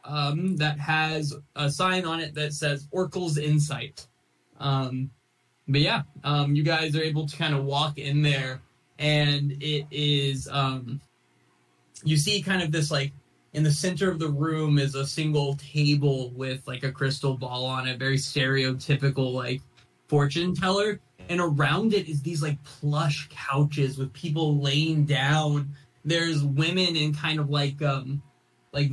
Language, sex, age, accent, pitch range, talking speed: English, male, 20-39, American, 135-155 Hz, 160 wpm